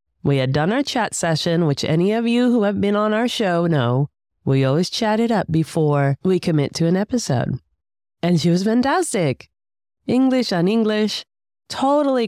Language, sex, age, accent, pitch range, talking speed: English, female, 30-49, American, 135-225 Hz, 170 wpm